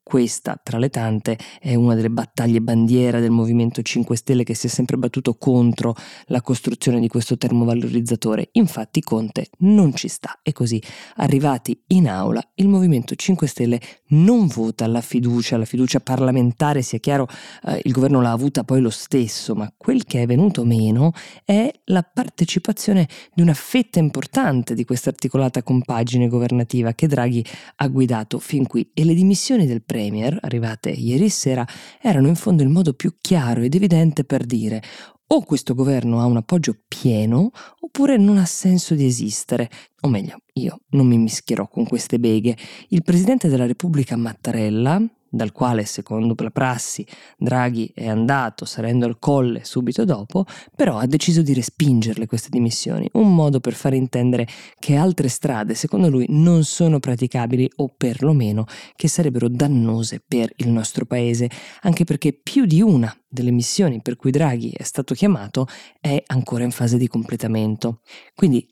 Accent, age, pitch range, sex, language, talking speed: native, 20-39, 120-160 Hz, female, Italian, 165 wpm